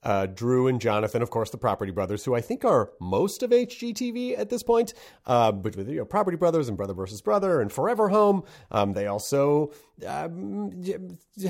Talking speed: 195 wpm